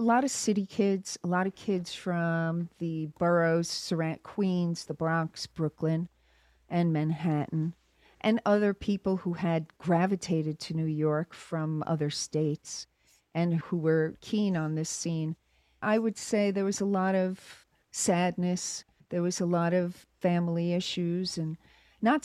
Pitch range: 160-200 Hz